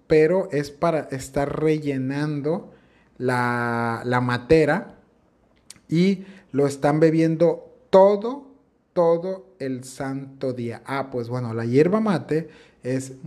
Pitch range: 125-150 Hz